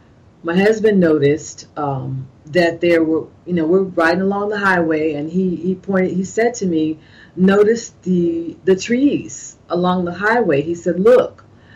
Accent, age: American, 40-59